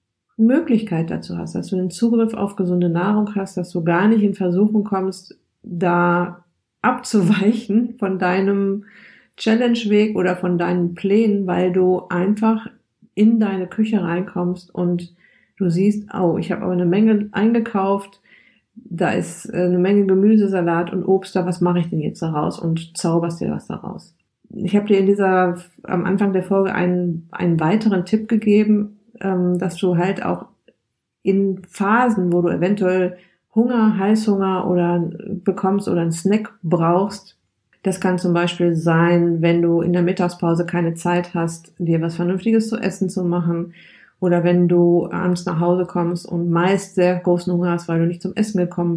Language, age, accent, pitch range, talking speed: German, 50-69, German, 175-205 Hz, 165 wpm